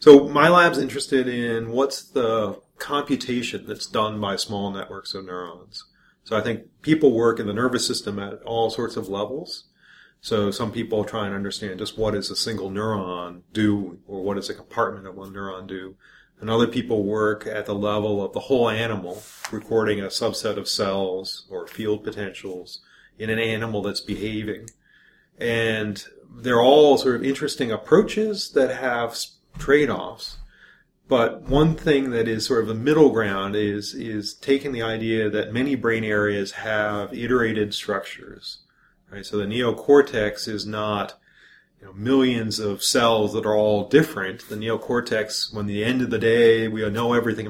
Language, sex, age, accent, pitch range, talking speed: English, male, 40-59, American, 105-120 Hz, 170 wpm